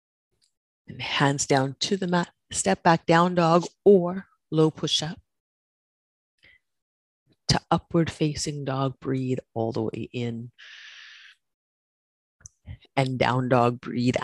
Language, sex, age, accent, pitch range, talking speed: English, female, 30-49, American, 120-155 Hz, 115 wpm